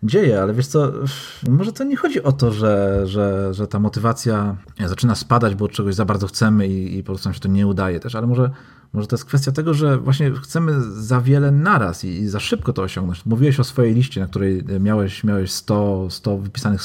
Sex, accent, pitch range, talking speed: male, native, 105-135 Hz, 220 wpm